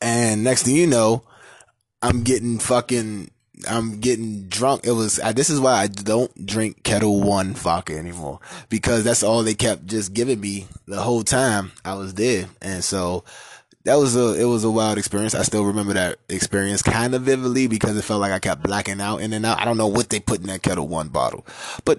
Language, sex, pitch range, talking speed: English, male, 100-125 Hz, 215 wpm